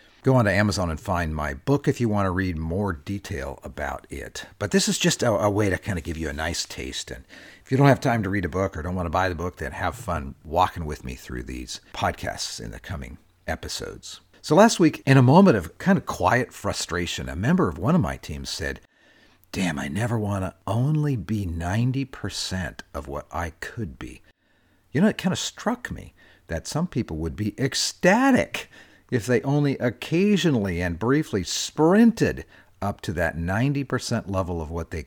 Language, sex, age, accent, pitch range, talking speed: English, male, 50-69, American, 85-125 Hz, 210 wpm